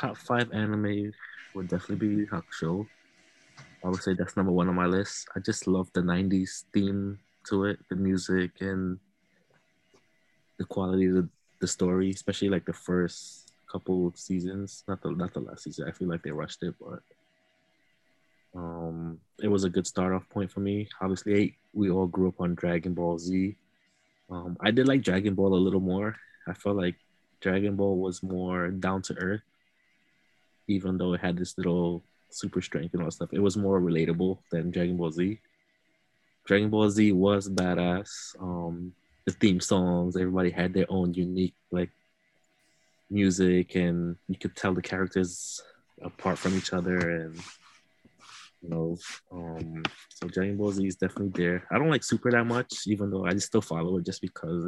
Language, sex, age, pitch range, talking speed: English, male, 20-39, 90-100 Hz, 175 wpm